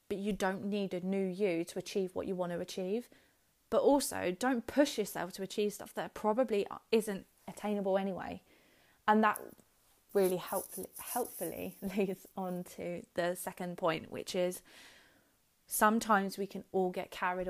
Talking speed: 160 wpm